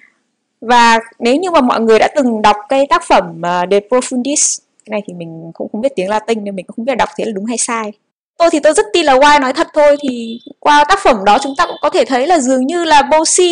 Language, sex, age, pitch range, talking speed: English, female, 20-39, 220-290 Hz, 270 wpm